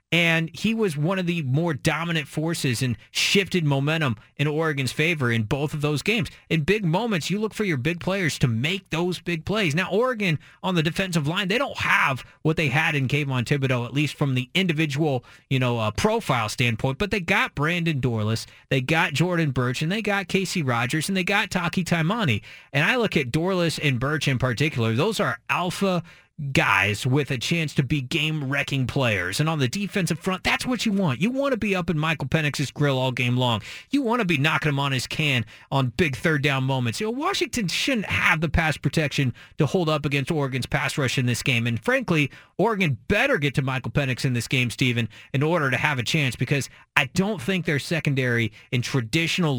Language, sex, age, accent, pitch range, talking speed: English, male, 30-49, American, 135-180 Hz, 215 wpm